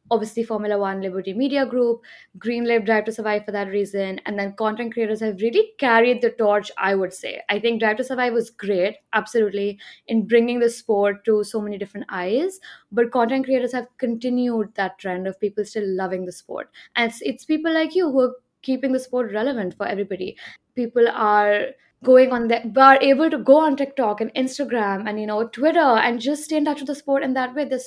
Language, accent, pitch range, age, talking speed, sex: English, Indian, 210-265 Hz, 20-39, 215 wpm, female